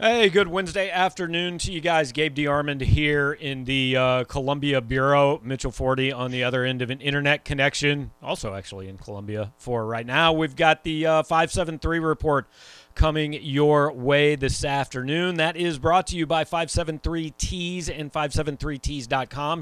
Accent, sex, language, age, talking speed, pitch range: American, male, English, 40-59, 160 wpm, 120-150 Hz